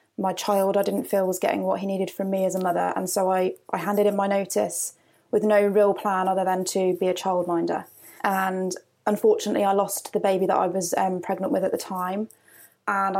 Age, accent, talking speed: 20-39, British, 225 wpm